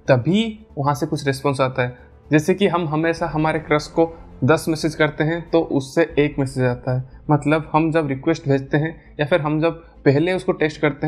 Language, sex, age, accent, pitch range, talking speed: Hindi, male, 20-39, native, 135-170 Hz, 205 wpm